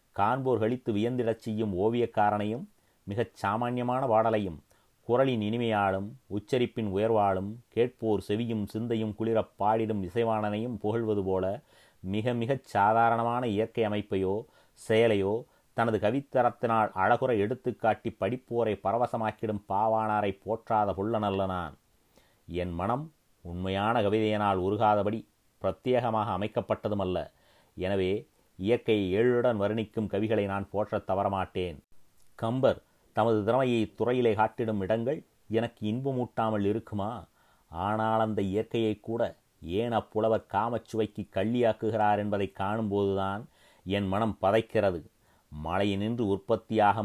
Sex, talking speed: male, 95 wpm